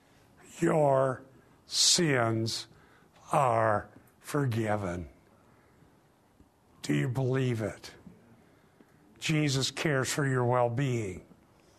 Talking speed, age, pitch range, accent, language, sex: 65 wpm, 50-69, 125-165 Hz, American, English, male